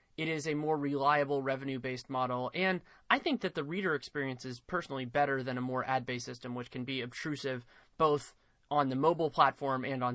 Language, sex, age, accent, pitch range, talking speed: English, male, 20-39, American, 130-155 Hz, 195 wpm